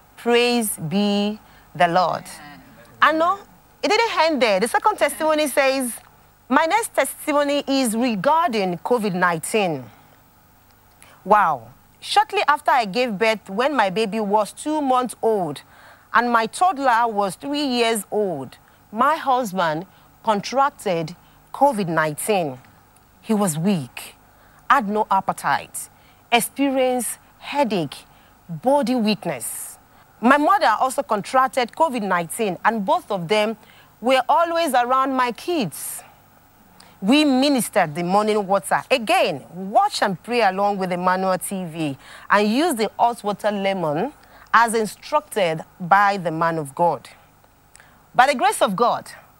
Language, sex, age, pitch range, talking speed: English, female, 40-59, 185-265 Hz, 120 wpm